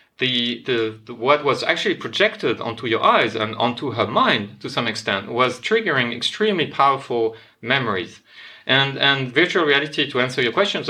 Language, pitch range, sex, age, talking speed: English, 115-160 Hz, male, 30-49, 165 wpm